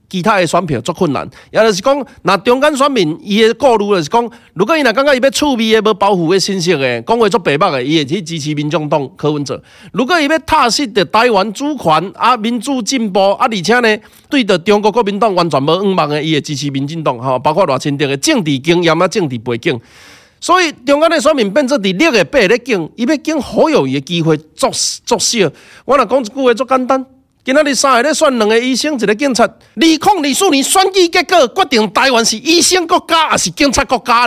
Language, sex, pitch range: Chinese, male, 180-270 Hz